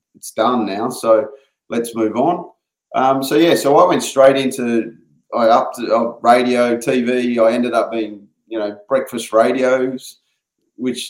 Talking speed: 155 wpm